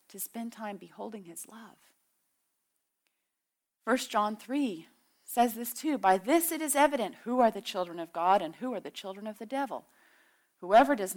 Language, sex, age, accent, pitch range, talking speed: English, female, 40-59, American, 195-265 Hz, 175 wpm